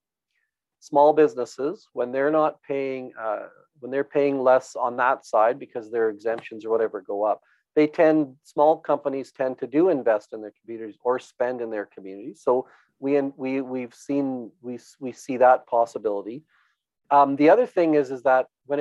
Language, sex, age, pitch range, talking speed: English, male, 40-59, 120-150 Hz, 180 wpm